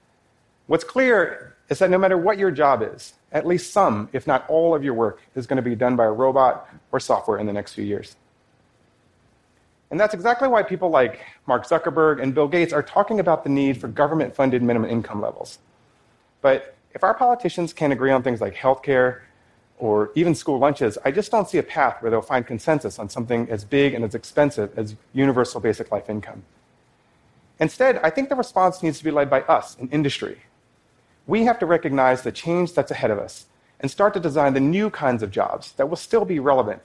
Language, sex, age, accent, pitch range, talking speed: English, male, 40-59, American, 125-165 Hz, 210 wpm